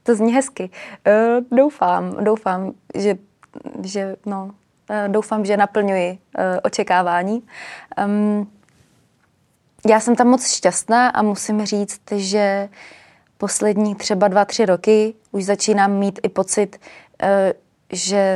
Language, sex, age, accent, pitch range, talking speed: Czech, female, 20-39, native, 185-210 Hz, 120 wpm